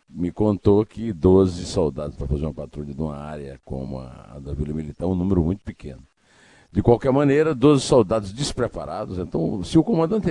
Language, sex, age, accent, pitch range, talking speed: Portuguese, male, 60-79, Brazilian, 85-130 Hz, 180 wpm